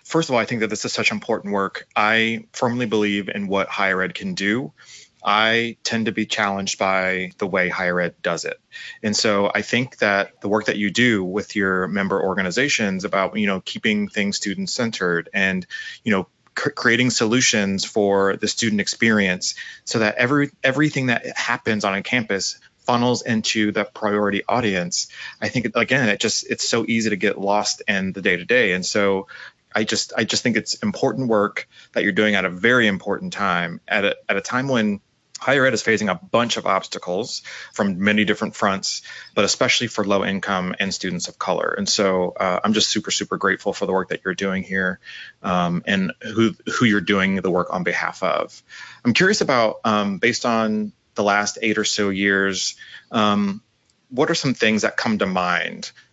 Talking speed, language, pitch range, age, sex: 195 wpm, English, 95-115 Hz, 20-39, male